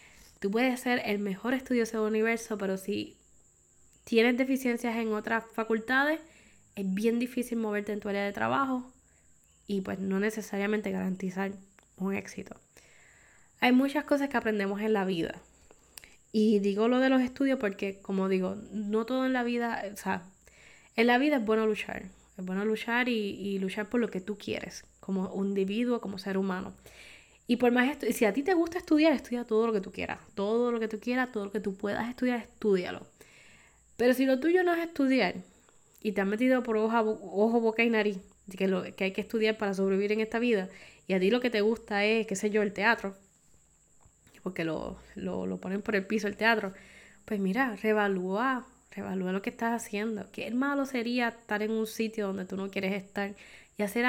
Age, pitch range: 10-29, 200-240 Hz